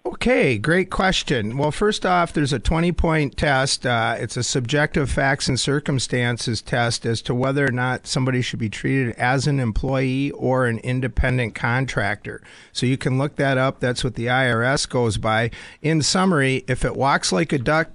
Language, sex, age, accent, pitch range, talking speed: English, male, 50-69, American, 125-150 Hz, 180 wpm